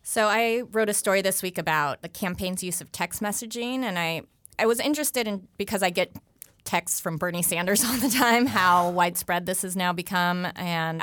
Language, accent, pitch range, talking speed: English, American, 150-180 Hz, 200 wpm